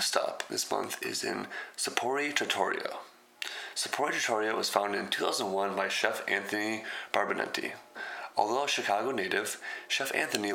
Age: 20-39